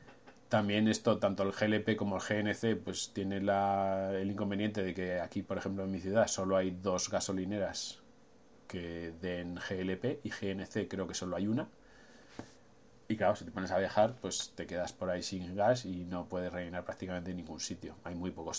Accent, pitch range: Spanish, 90-100 Hz